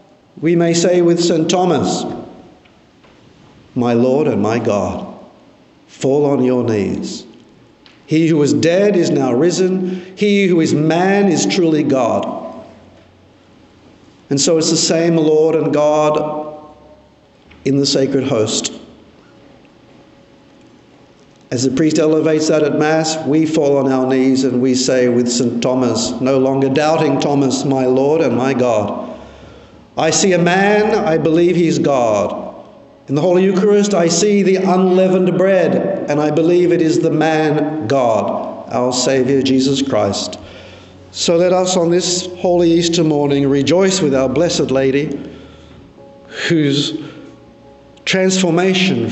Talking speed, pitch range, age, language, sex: 140 wpm, 135-170 Hz, 50-69, English, male